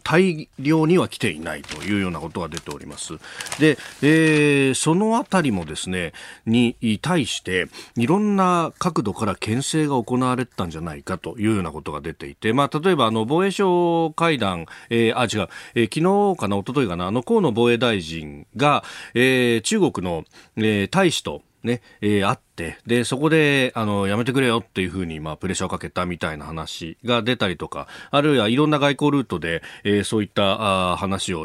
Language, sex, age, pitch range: Japanese, male, 40-59, 100-160 Hz